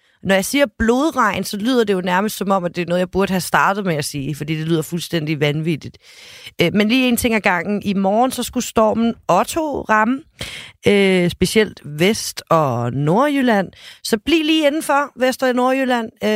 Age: 30-49